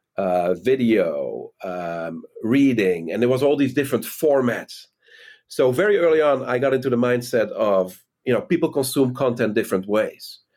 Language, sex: English, male